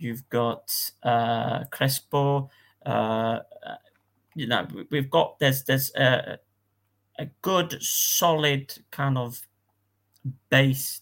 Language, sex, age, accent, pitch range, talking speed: English, male, 30-49, British, 120-145 Hz, 100 wpm